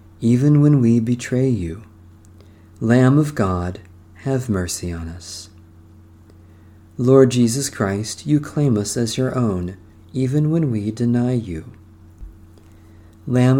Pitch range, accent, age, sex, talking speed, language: 90-130 Hz, American, 40-59, male, 120 wpm, English